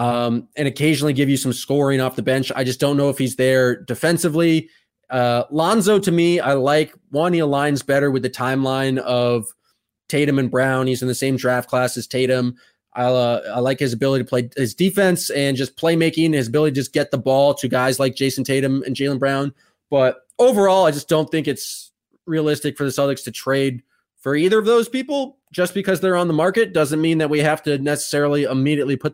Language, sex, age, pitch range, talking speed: English, male, 20-39, 130-165 Hz, 210 wpm